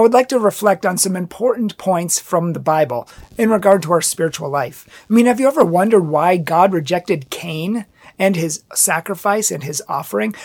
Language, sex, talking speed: English, male, 195 wpm